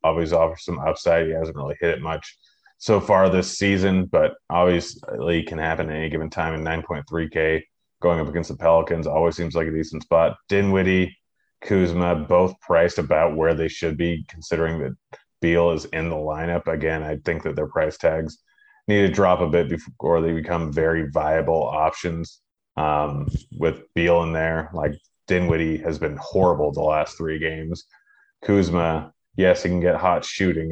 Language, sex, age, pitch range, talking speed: English, male, 30-49, 80-90 Hz, 175 wpm